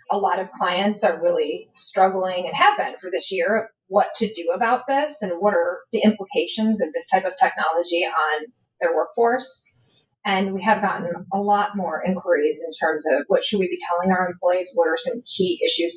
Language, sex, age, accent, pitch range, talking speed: English, female, 30-49, American, 180-250 Hz, 205 wpm